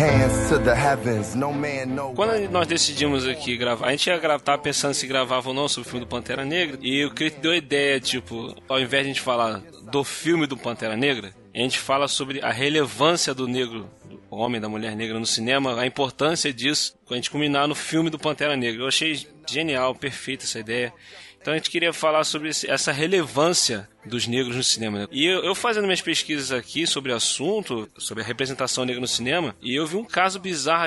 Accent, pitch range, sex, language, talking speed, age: Brazilian, 125-165 Hz, male, Portuguese, 200 wpm, 20-39